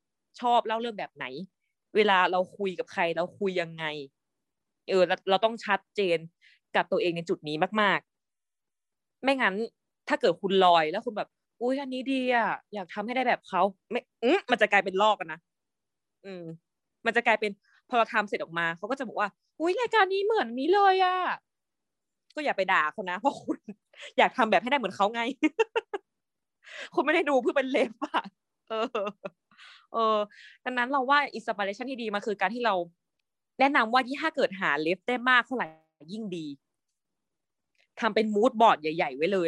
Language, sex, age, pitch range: Thai, female, 20-39, 180-245 Hz